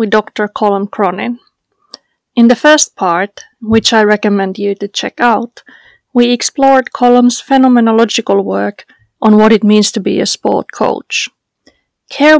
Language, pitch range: English, 215-255 Hz